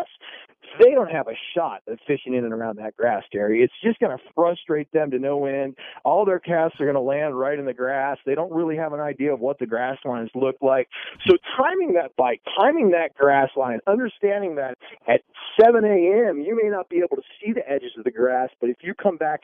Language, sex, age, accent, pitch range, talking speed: English, male, 40-59, American, 130-175 Hz, 235 wpm